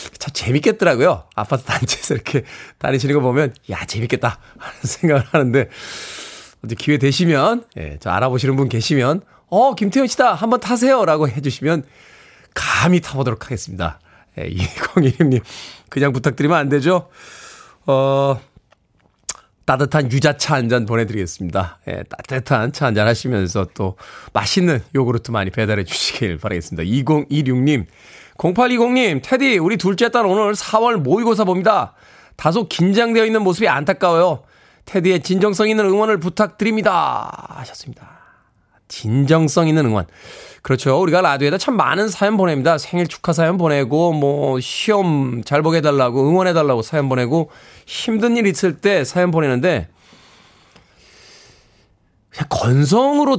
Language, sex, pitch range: Korean, male, 125-190 Hz